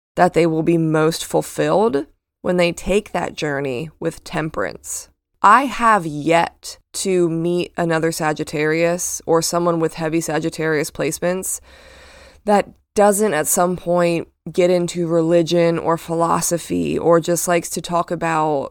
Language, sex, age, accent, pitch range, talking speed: English, female, 20-39, American, 160-180 Hz, 135 wpm